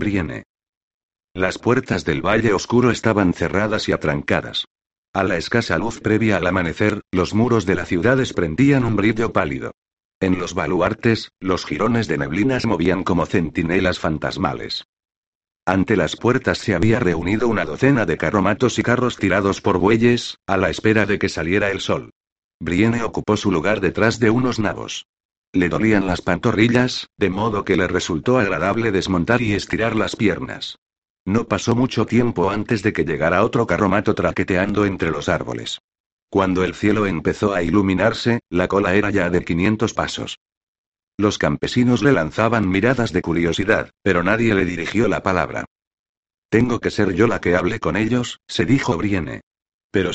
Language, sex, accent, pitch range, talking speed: Spanish, male, Spanish, 90-115 Hz, 165 wpm